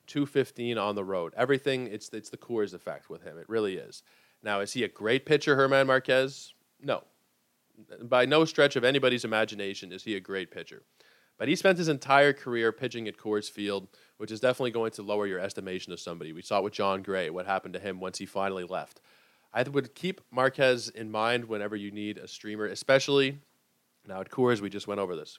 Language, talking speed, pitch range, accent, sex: English, 210 wpm, 105-135 Hz, American, male